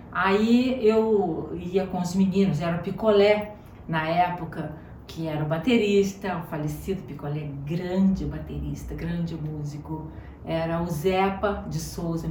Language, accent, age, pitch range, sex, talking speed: Portuguese, Brazilian, 40-59, 160-235 Hz, female, 130 wpm